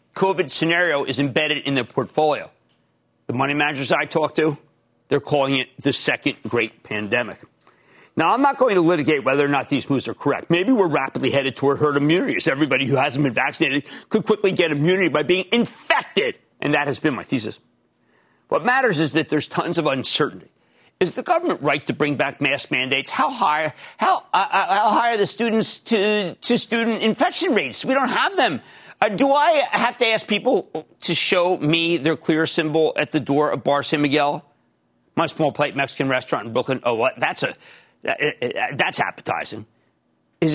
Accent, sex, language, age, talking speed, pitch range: American, male, English, 50-69, 185 wpm, 140-190 Hz